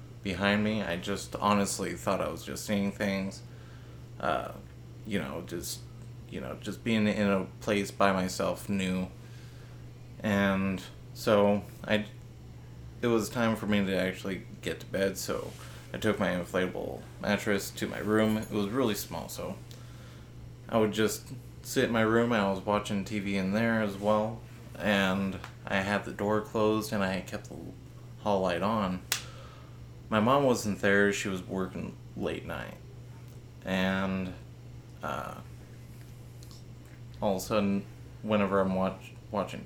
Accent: American